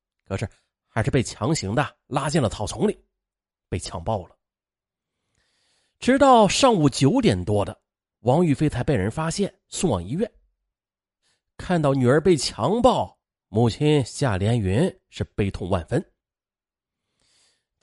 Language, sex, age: Chinese, male, 30-49